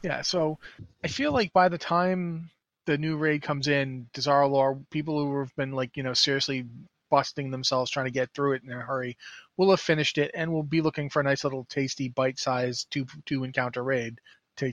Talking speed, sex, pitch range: 210 wpm, male, 140-165 Hz